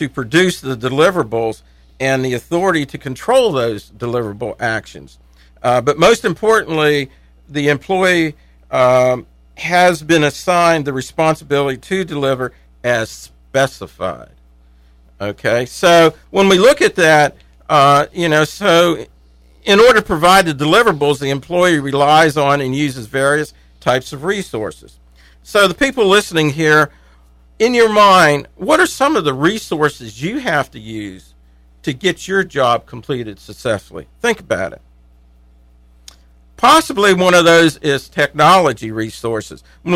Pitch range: 110-165 Hz